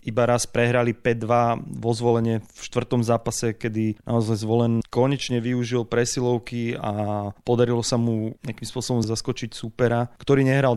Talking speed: 140 wpm